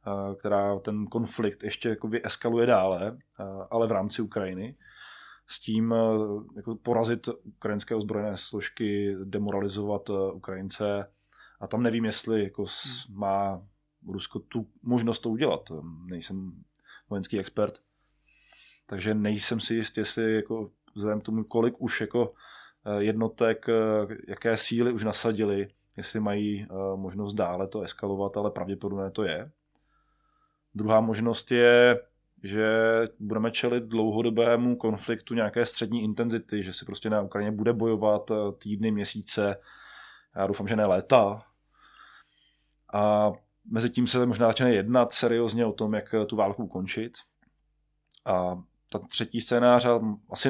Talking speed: 125 wpm